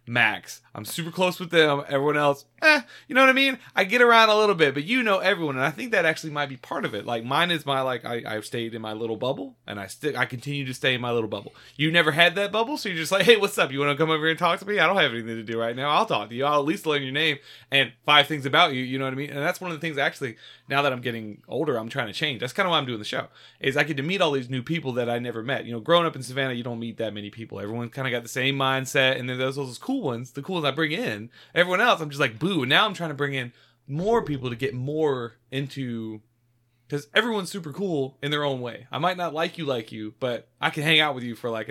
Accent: American